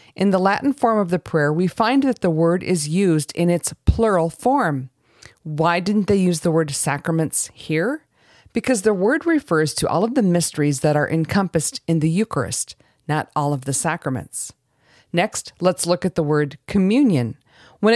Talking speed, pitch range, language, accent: 180 wpm, 150-205 Hz, English, American